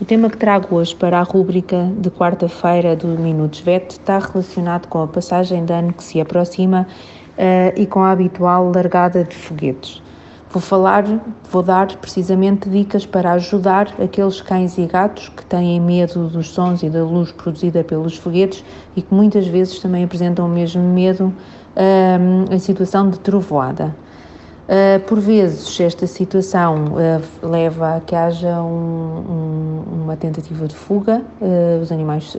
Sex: female